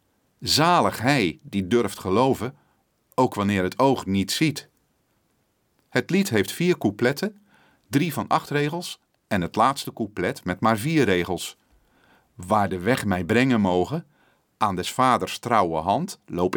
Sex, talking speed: male, 145 wpm